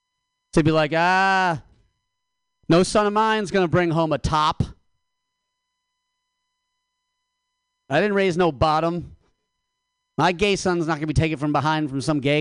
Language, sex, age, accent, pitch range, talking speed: English, male, 40-59, American, 130-215 Hz, 155 wpm